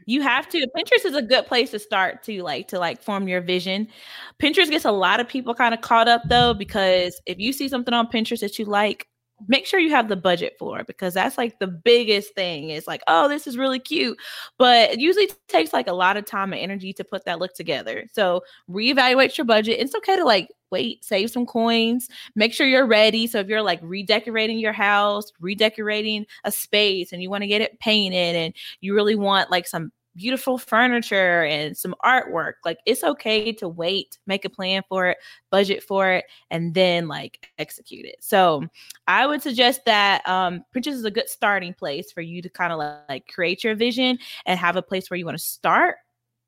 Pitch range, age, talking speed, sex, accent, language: 180-235 Hz, 20-39, 215 wpm, female, American, English